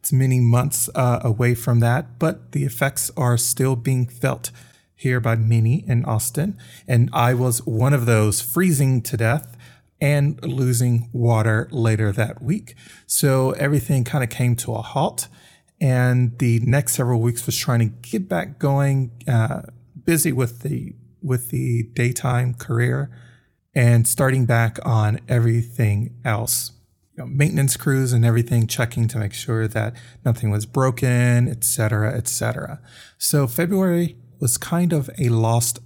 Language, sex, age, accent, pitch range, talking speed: English, male, 30-49, American, 115-135 Hz, 150 wpm